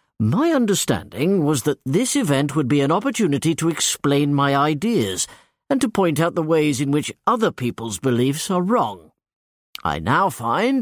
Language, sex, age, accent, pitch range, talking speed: English, male, 50-69, British, 115-185 Hz, 165 wpm